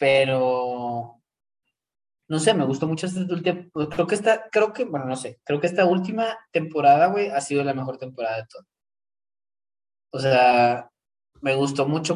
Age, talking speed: 20-39, 170 wpm